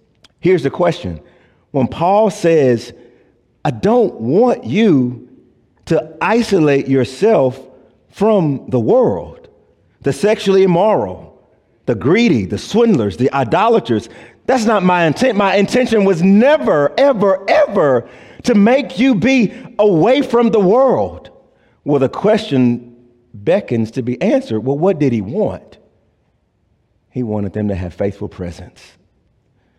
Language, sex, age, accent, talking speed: English, male, 40-59, American, 125 wpm